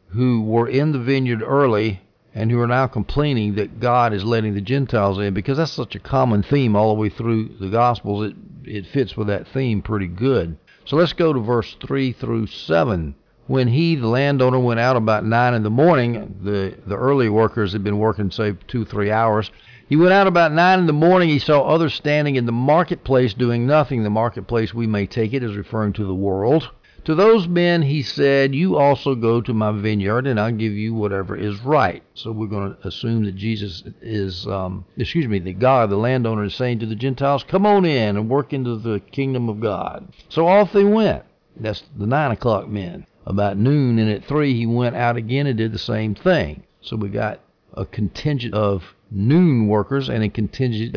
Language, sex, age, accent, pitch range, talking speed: English, male, 50-69, American, 105-135 Hz, 210 wpm